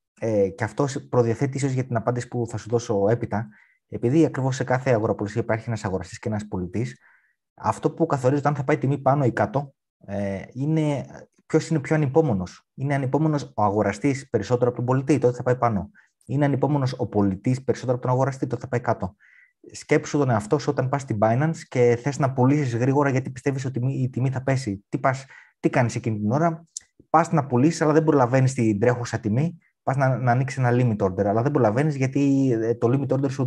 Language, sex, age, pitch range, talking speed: Greek, male, 20-39, 115-150 Hz, 200 wpm